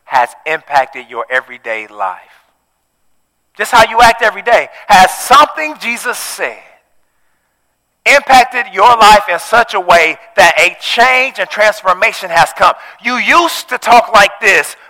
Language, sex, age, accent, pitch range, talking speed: English, male, 40-59, American, 165-235 Hz, 140 wpm